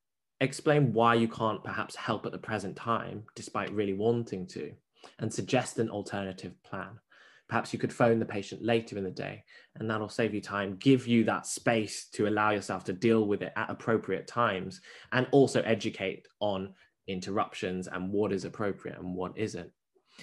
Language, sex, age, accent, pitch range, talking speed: English, male, 10-29, British, 100-120 Hz, 180 wpm